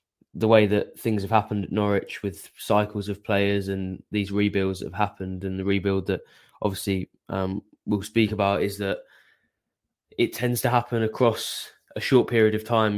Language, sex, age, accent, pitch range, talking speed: English, male, 20-39, British, 95-105 Hz, 175 wpm